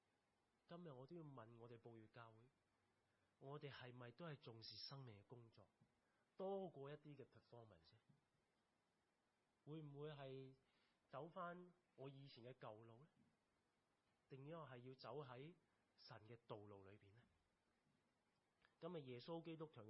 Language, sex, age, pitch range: Chinese, male, 30-49, 120-165 Hz